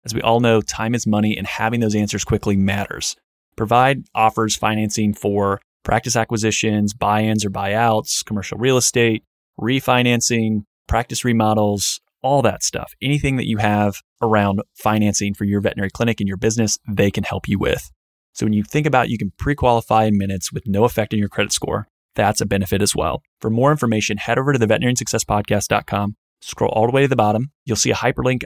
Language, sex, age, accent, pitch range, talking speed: English, male, 20-39, American, 105-120 Hz, 190 wpm